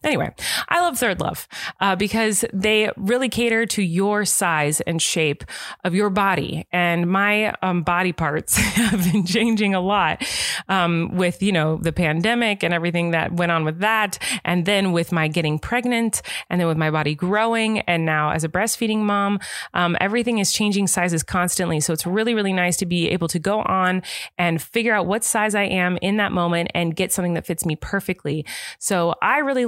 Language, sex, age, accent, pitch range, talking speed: English, female, 20-39, American, 175-235 Hz, 195 wpm